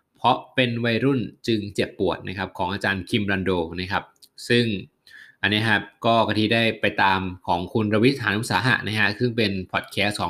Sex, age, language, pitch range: male, 20-39, Thai, 100-125 Hz